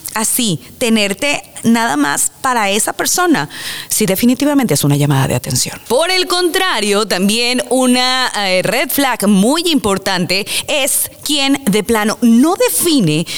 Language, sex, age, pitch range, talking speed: Spanish, female, 30-49, 205-275 Hz, 130 wpm